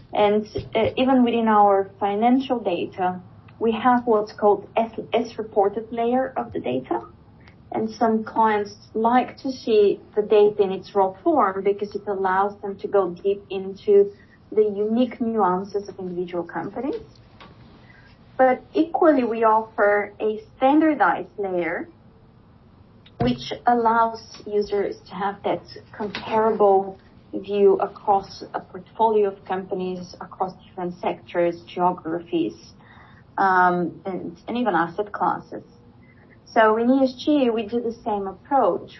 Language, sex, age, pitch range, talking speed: English, female, 30-49, 195-235 Hz, 125 wpm